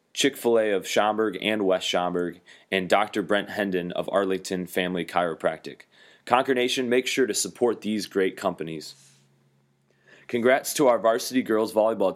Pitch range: 90-110 Hz